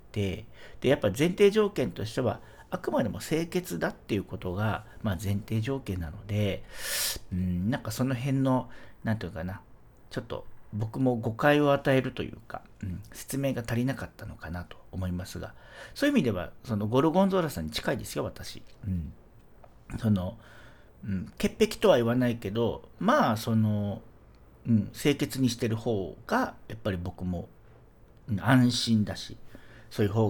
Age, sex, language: 50-69, male, Japanese